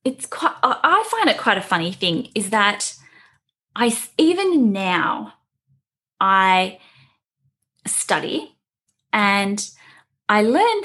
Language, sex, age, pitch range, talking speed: English, female, 10-29, 180-275 Hz, 105 wpm